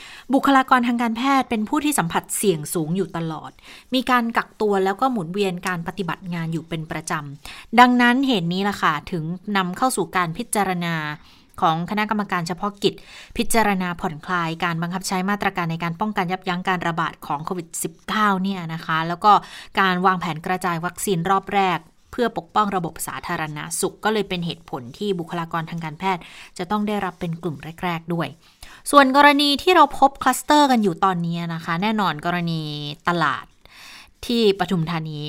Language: Thai